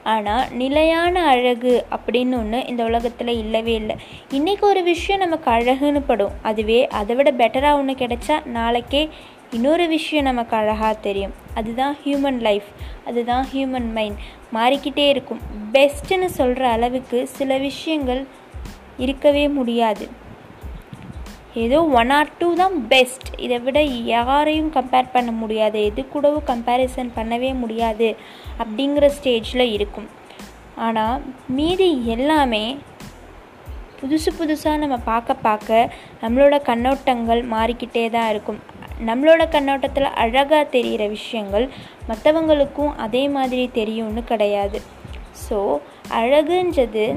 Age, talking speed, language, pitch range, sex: 20-39, 110 wpm, Tamil, 230-285 Hz, female